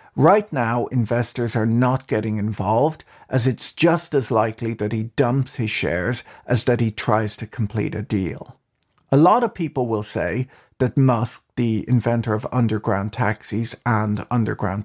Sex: male